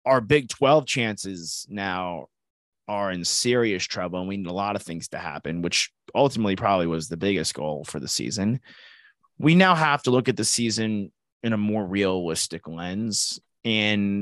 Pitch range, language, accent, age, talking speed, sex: 95-135 Hz, English, American, 30-49, 175 wpm, male